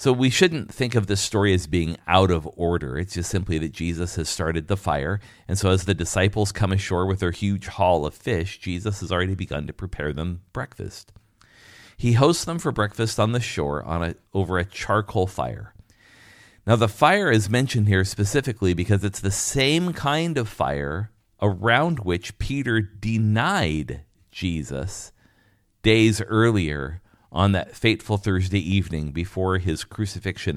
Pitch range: 90-110 Hz